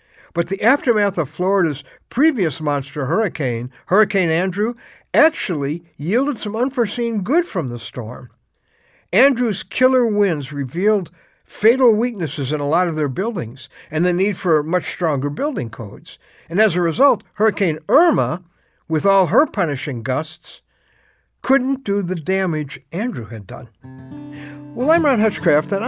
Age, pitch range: 60-79, 140-215 Hz